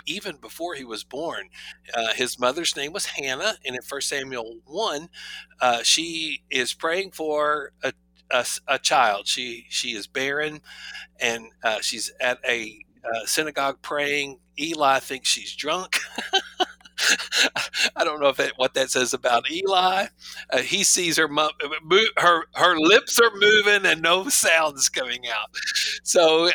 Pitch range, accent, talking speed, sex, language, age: 115-175 Hz, American, 150 wpm, male, English, 60-79